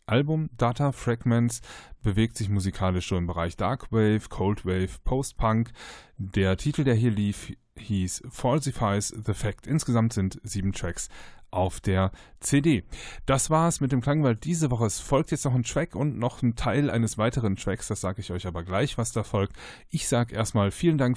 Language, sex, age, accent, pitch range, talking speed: German, male, 10-29, German, 100-130 Hz, 180 wpm